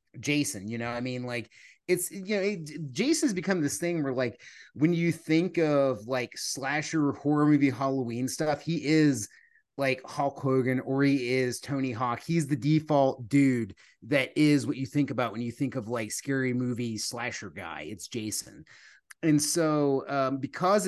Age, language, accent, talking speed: 30-49, English, American, 170 wpm